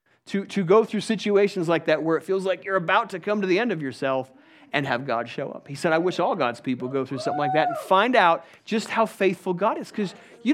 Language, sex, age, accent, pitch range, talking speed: English, male, 40-59, American, 165-235 Hz, 270 wpm